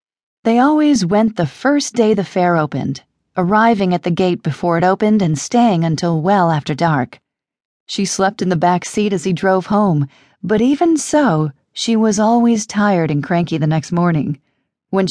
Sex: female